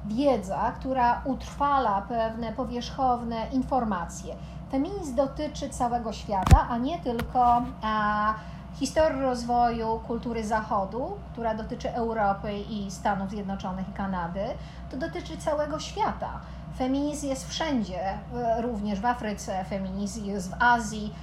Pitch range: 210-270 Hz